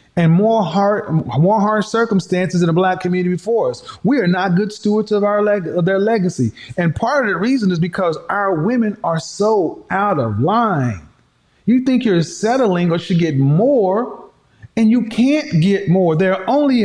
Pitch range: 175-230 Hz